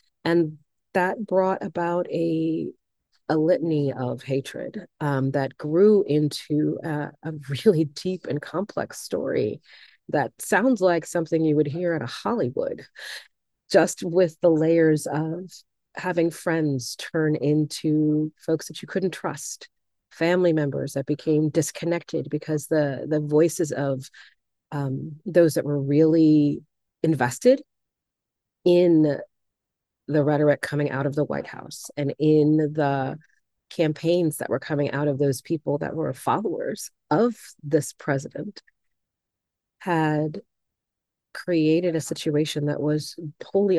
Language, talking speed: English, 125 wpm